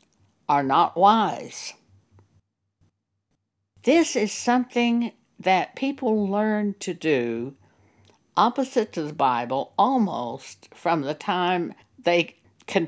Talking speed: 100 wpm